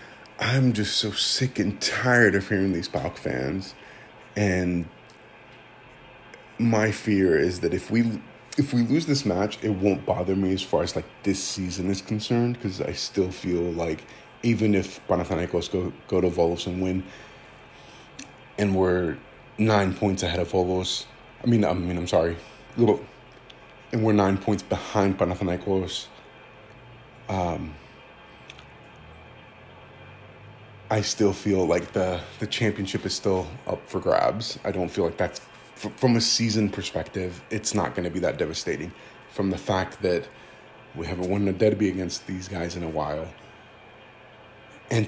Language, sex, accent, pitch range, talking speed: English, male, American, 90-110 Hz, 150 wpm